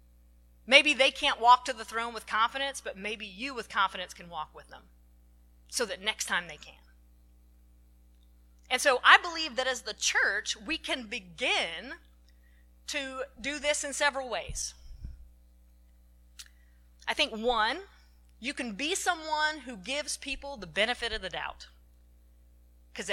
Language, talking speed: English, 150 wpm